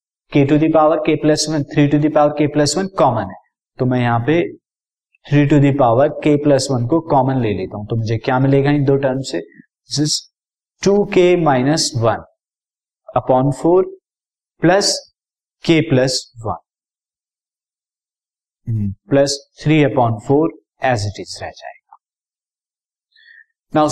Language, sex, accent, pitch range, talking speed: Hindi, male, native, 120-155 Hz, 155 wpm